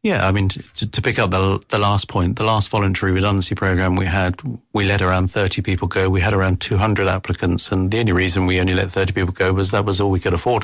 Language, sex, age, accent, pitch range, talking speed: English, male, 40-59, British, 90-105 Hz, 260 wpm